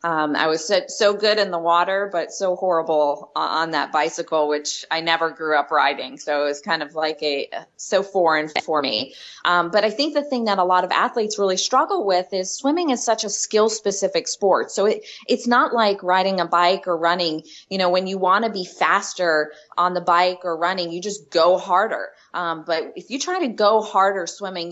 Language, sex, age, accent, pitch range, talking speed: English, female, 20-39, American, 170-210 Hz, 215 wpm